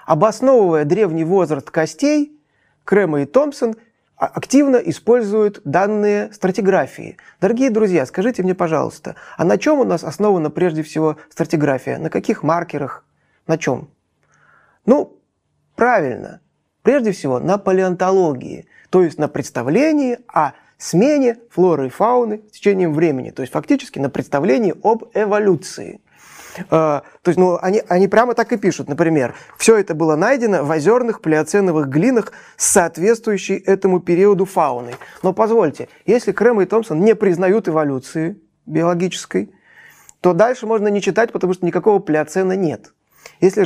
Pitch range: 160-210 Hz